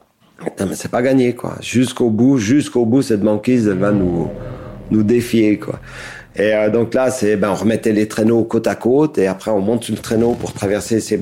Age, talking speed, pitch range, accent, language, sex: 40-59, 220 wpm, 100-120 Hz, French, French, male